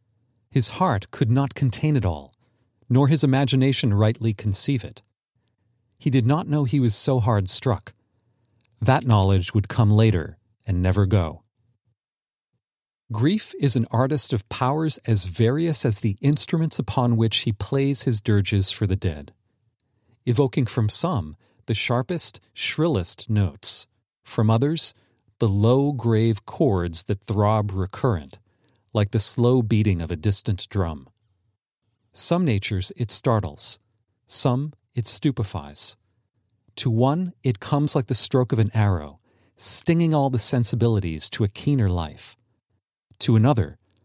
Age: 40-59